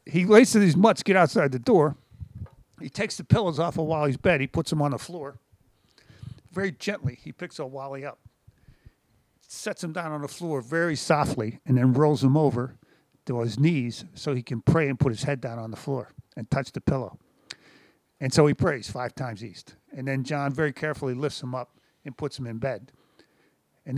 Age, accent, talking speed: 50-69, American, 205 wpm